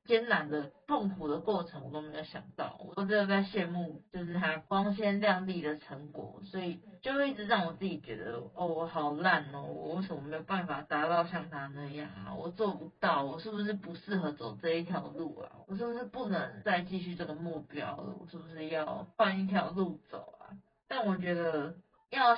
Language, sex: Chinese, female